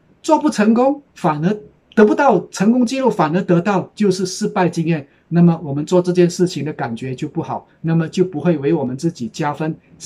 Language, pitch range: Chinese, 145-185 Hz